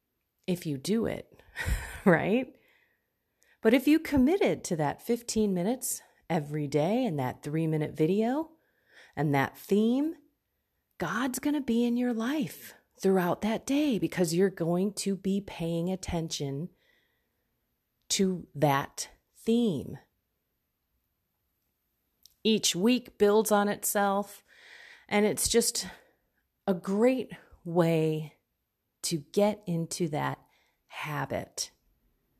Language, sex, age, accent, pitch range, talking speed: English, female, 30-49, American, 160-230 Hz, 110 wpm